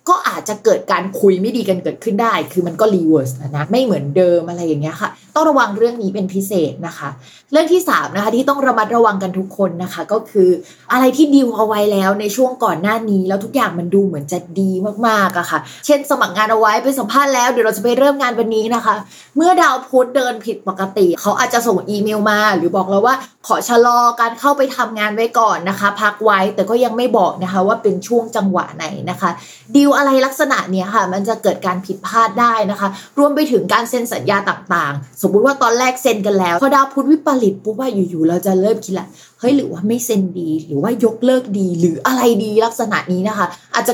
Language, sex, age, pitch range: Thai, female, 20-39, 185-250 Hz